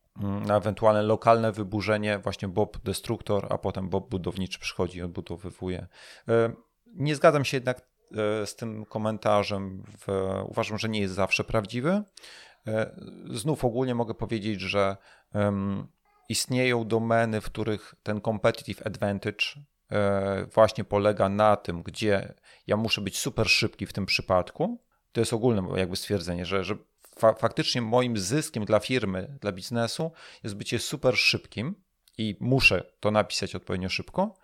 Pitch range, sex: 100-120 Hz, male